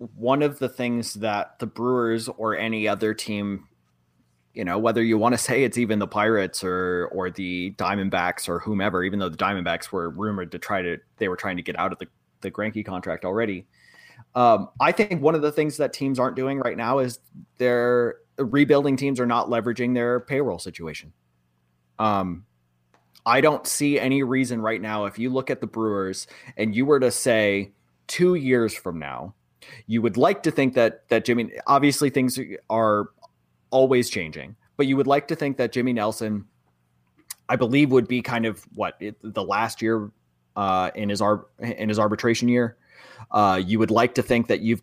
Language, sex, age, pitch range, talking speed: English, male, 30-49, 95-125 Hz, 190 wpm